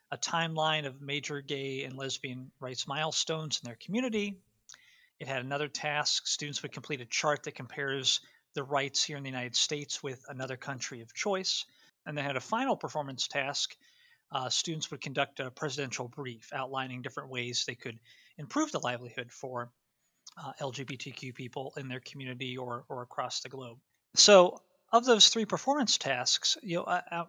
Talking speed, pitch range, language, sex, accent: 170 wpm, 135-180 Hz, English, male, American